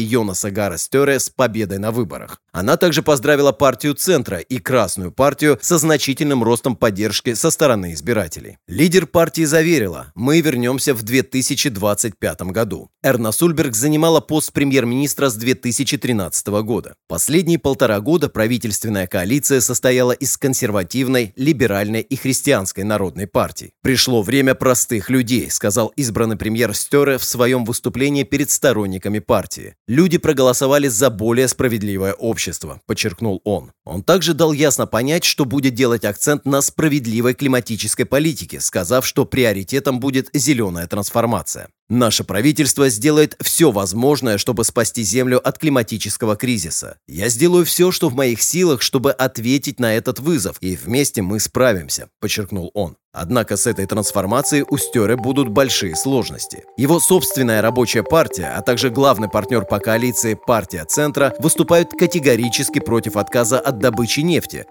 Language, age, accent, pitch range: Russian, 30-49, native, 110-140 Hz